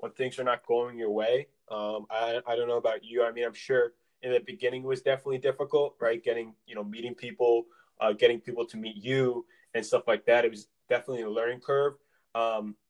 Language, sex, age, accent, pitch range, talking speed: English, male, 20-39, American, 120-155 Hz, 225 wpm